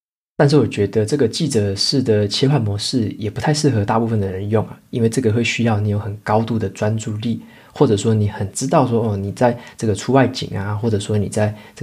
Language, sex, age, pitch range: Chinese, male, 20-39, 105-125 Hz